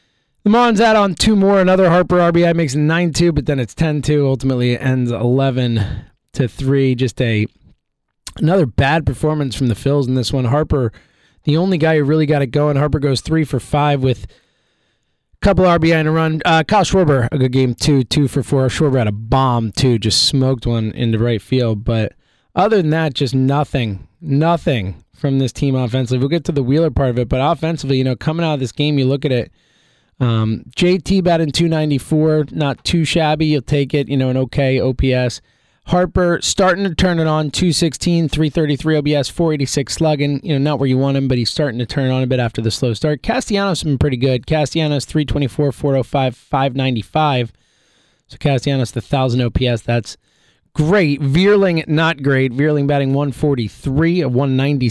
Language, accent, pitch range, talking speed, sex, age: English, American, 130-155 Hz, 190 wpm, male, 20-39